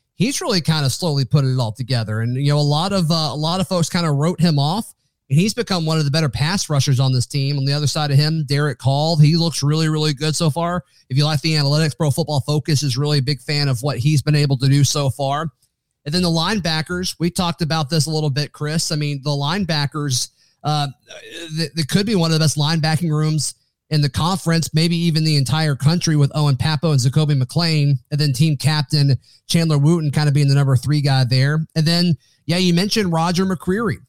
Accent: American